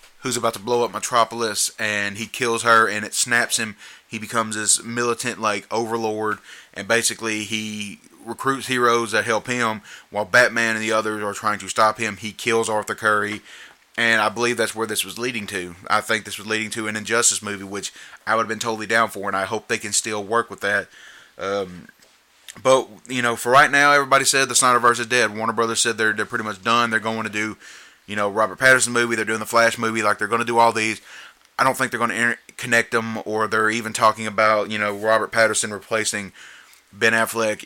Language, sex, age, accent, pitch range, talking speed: English, male, 30-49, American, 110-120 Hz, 220 wpm